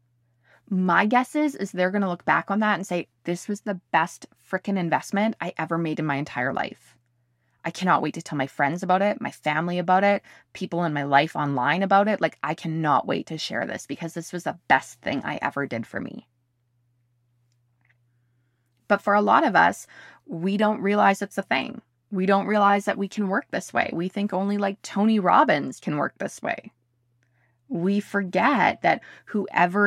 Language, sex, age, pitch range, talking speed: English, female, 20-39, 155-200 Hz, 200 wpm